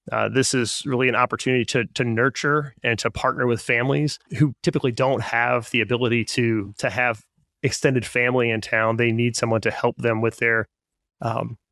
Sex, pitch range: male, 115-140 Hz